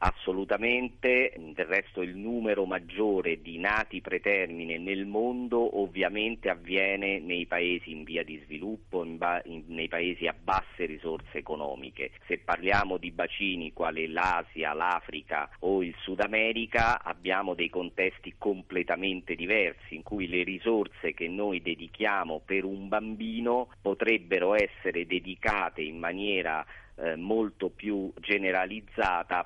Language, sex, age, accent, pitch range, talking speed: Italian, male, 40-59, native, 85-105 Hz, 120 wpm